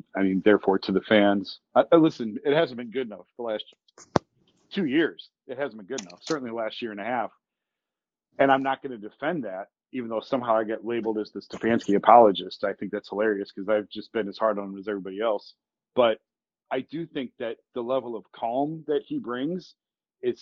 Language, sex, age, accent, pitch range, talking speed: English, male, 40-59, American, 110-150 Hz, 220 wpm